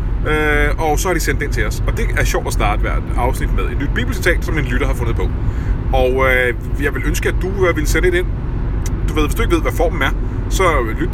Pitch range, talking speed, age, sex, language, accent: 105-125 Hz, 270 wpm, 30-49, male, Danish, native